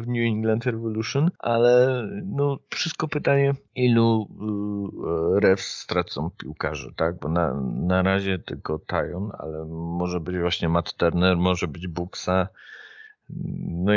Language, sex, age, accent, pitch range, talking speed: Polish, male, 40-59, native, 90-130 Hz, 130 wpm